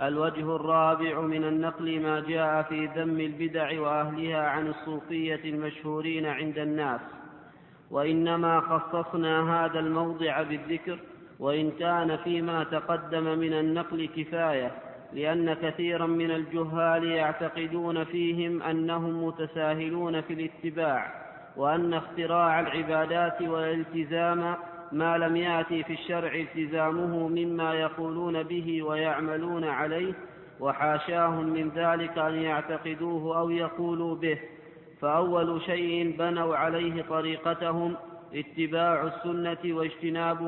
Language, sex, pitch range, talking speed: Arabic, male, 160-170 Hz, 100 wpm